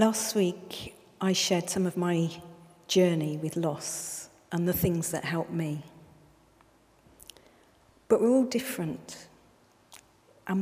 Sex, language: female, English